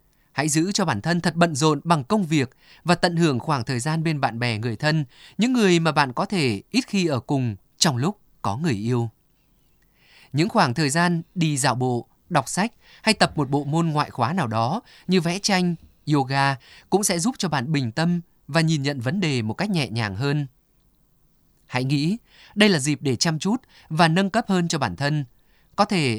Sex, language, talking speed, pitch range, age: male, Vietnamese, 215 wpm, 130-175 Hz, 20-39